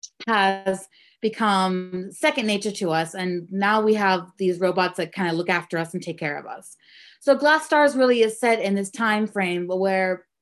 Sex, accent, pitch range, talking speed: female, American, 180-225 Hz, 190 wpm